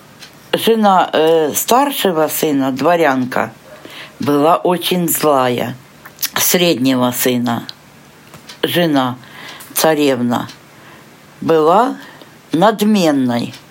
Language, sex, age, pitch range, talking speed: Ukrainian, female, 60-79, 150-220 Hz, 60 wpm